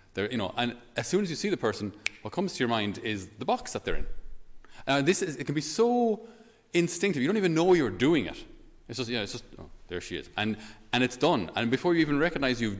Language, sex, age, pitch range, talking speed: English, male, 30-49, 100-135 Hz, 250 wpm